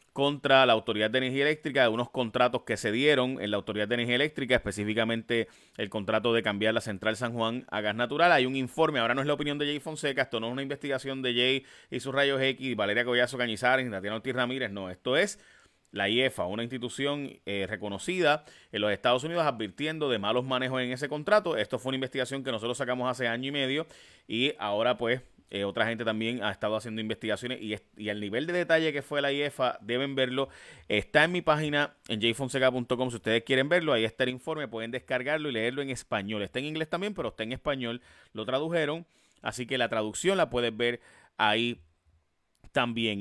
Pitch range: 110-135 Hz